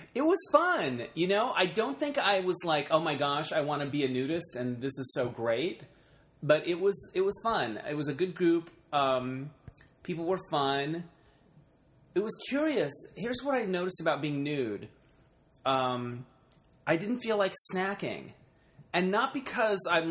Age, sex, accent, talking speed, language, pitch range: 30-49, male, American, 180 wpm, English, 135-180 Hz